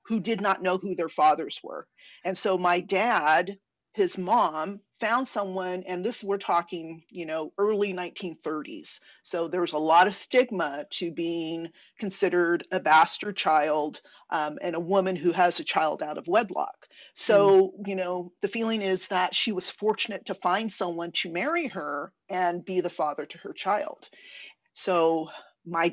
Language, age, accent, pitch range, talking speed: English, 50-69, American, 170-200 Hz, 170 wpm